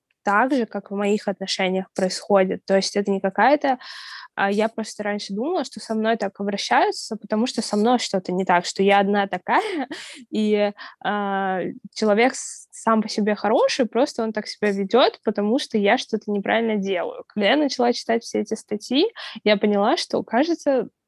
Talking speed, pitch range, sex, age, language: 175 wpm, 195-230 Hz, female, 10-29, Russian